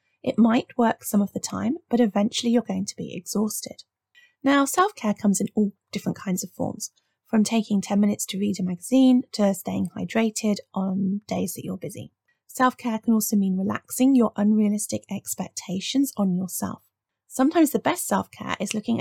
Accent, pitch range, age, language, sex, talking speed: British, 200-235 Hz, 30-49, English, female, 175 wpm